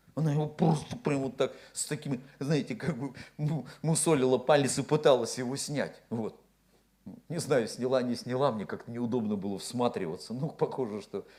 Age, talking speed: 50-69, 165 wpm